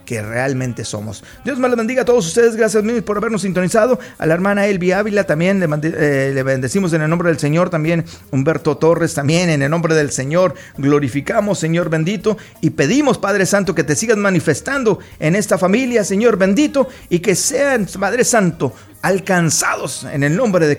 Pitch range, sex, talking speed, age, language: 150-200 Hz, male, 190 wpm, 40-59, Spanish